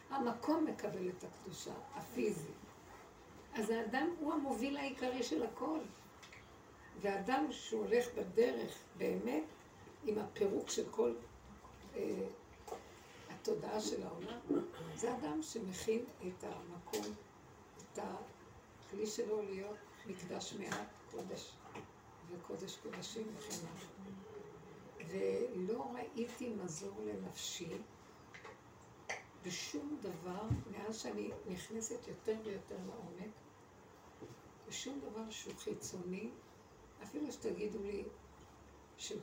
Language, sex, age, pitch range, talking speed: Hebrew, female, 60-79, 195-235 Hz, 90 wpm